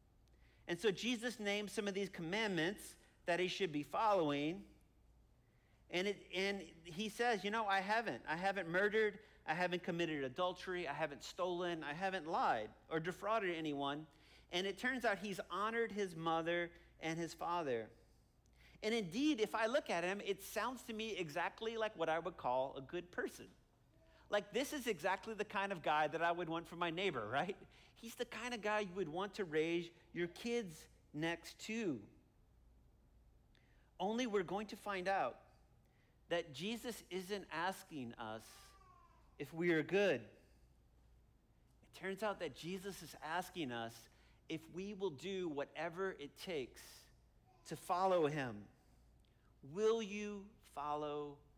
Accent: American